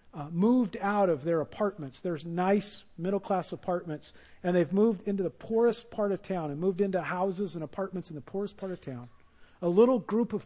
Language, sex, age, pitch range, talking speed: English, male, 50-69, 170-210 Hz, 200 wpm